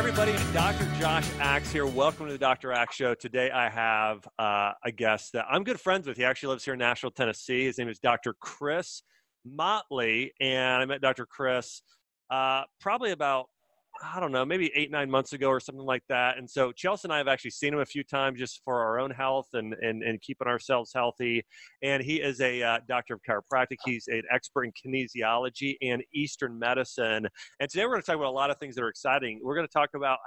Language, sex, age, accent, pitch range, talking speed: English, male, 30-49, American, 120-140 Hz, 225 wpm